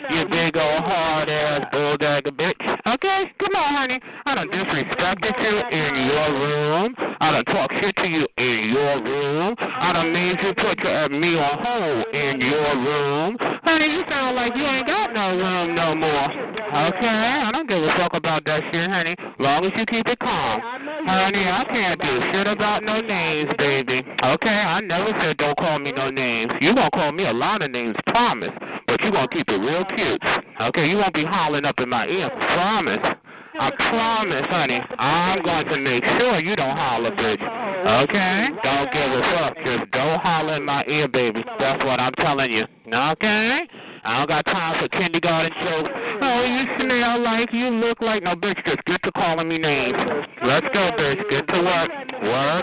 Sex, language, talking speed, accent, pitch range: male, English, 195 wpm, American, 150-230 Hz